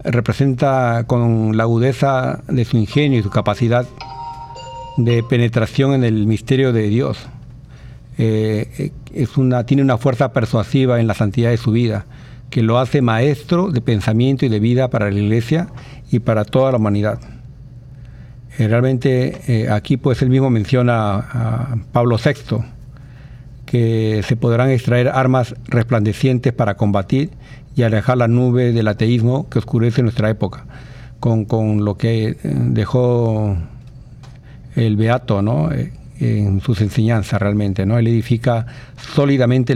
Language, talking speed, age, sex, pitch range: Spanish, 135 wpm, 60-79, male, 115-130 Hz